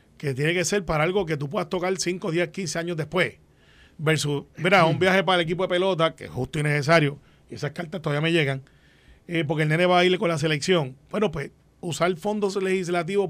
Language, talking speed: Spanish, 225 wpm